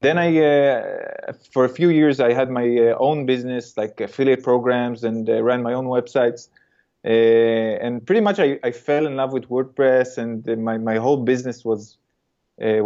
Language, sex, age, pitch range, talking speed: English, male, 20-39, 115-135 Hz, 190 wpm